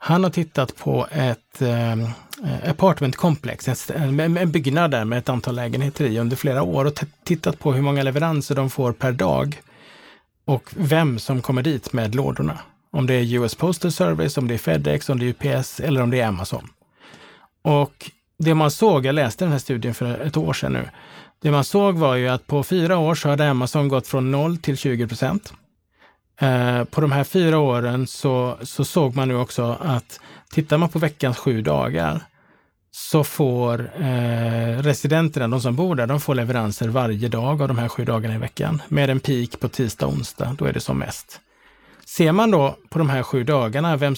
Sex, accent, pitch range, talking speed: male, Norwegian, 125-155 Hz, 195 wpm